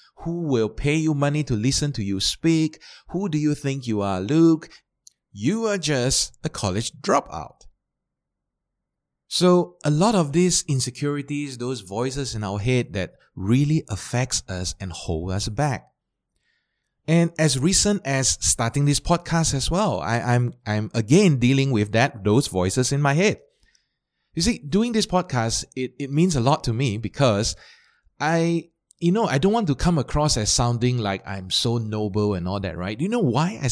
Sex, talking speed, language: male, 180 wpm, English